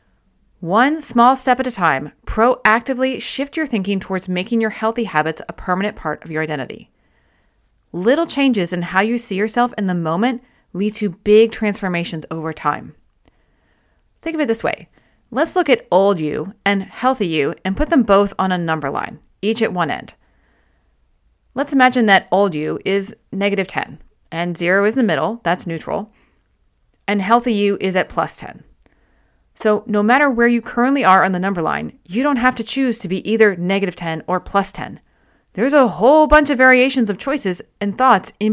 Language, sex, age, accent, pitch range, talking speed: English, female, 30-49, American, 180-240 Hz, 185 wpm